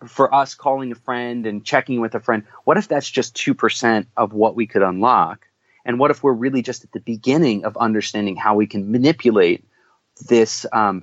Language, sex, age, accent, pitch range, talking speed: English, male, 30-49, American, 110-130 Hz, 200 wpm